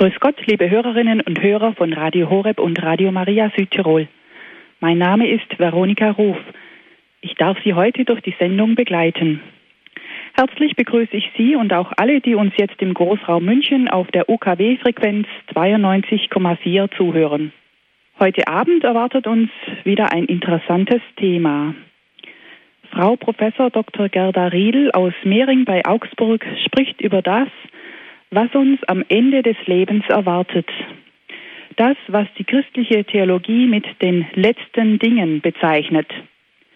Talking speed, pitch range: 130 wpm, 185-235 Hz